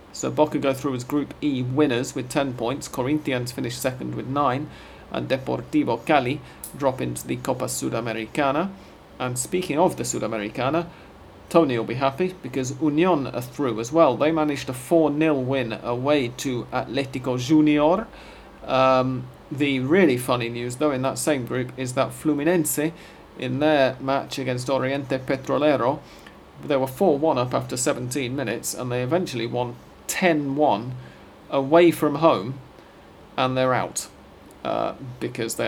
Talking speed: 150 wpm